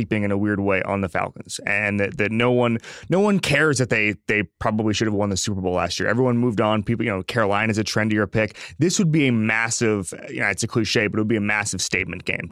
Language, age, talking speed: English, 20-39, 270 wpm